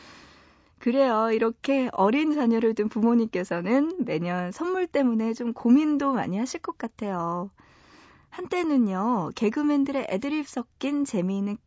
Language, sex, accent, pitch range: Korean, female, native, 195-275 Hz